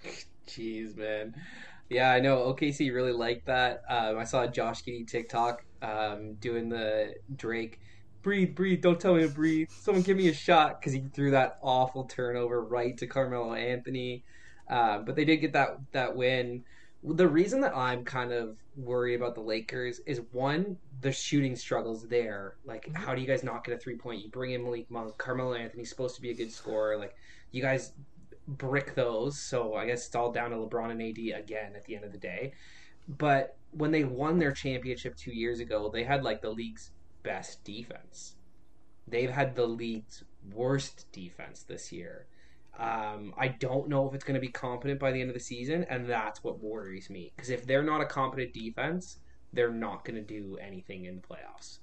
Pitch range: 110-135 Hz